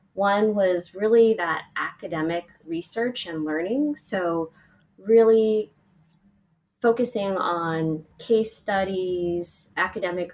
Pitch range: 165-195 Hz